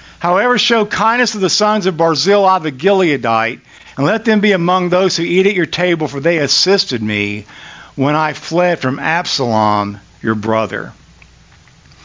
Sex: male